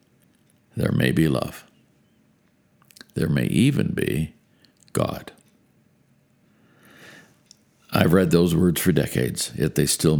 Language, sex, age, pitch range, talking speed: English, male, 60-79, 75-100 Hz, 105 wpm